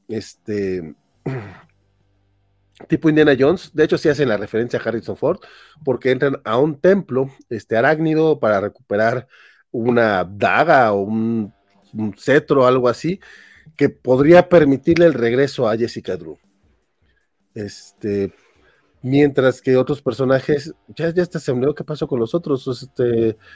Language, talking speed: Spanish, 145 wpm